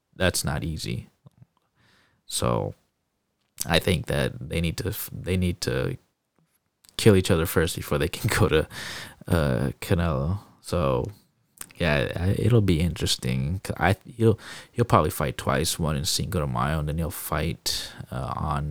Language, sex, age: English, male, 20-39